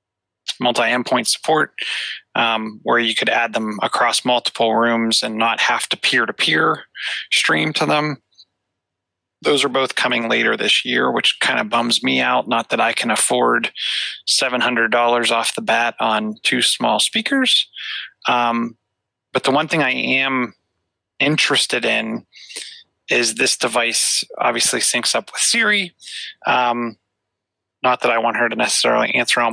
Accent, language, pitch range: American, English, 110-125 Hz